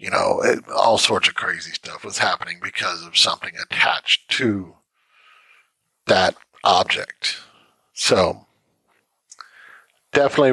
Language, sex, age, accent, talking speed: English, male, 50-69, American, 105 wpm